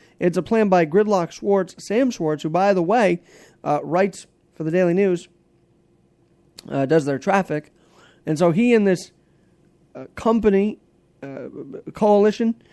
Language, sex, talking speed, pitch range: English, male, 145 wpm, 175-210 Hz